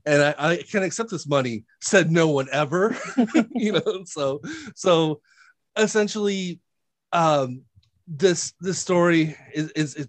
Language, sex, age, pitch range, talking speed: English, male, 30-49, 125-155 Hz, 135 wpm